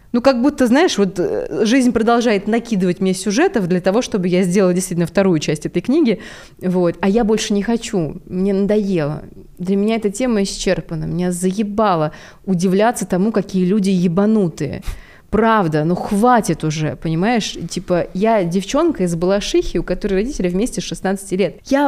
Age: 20-39